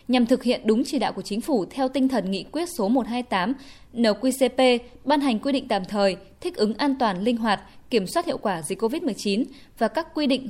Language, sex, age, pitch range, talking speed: Vietnamese, female, 10-29, 215-270 Hz, 225 wpm